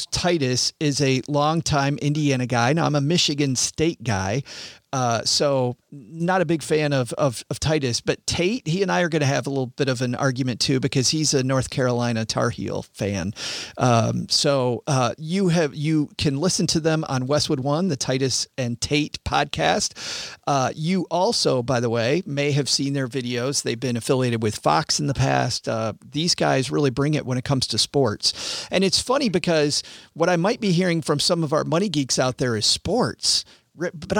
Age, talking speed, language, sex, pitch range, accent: 40-59, 200 wpm, English, male, 130-165 Hz, American